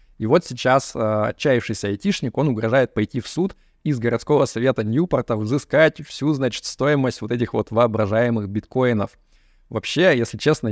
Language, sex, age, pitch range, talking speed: Russian, male, 20-39, 110-130 Hz, 150 wpm